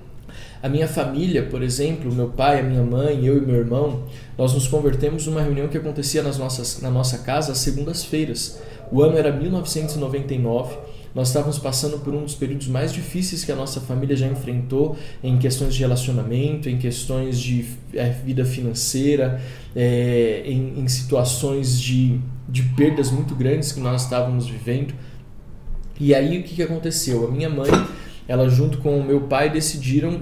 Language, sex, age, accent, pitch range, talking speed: Portuguese, male, 20-39, Brazilian, 125-150 Hz, 165 wpm